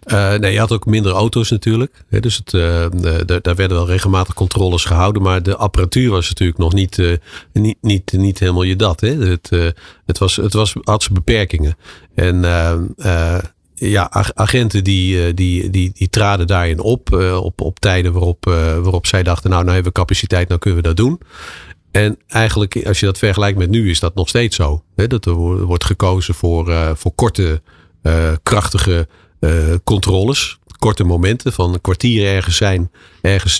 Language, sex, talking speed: Dutch, male, 190 wpm